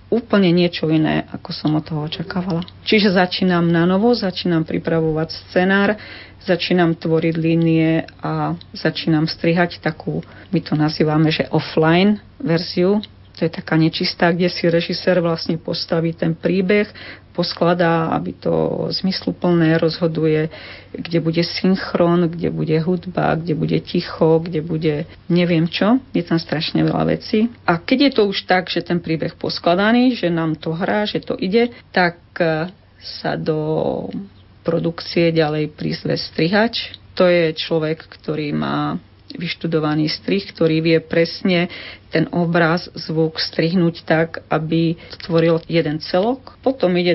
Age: 40-59